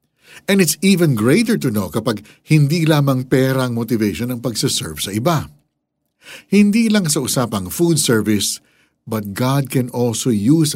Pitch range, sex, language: 105-155 Hz, male, Filipino